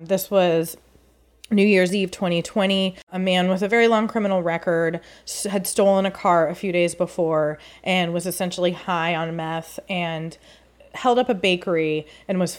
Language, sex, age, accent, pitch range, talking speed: English, female, 20-39, American, 170-215 Hz, 165 wpm